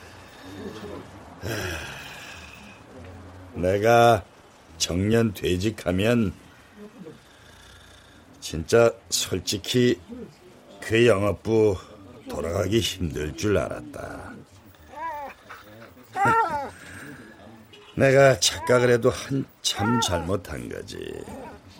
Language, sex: Korean, male